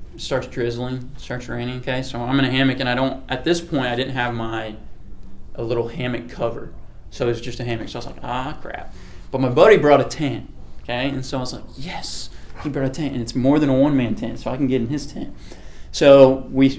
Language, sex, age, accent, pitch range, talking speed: English, male, 20-39, American, 120-145 Hz, 245 wpm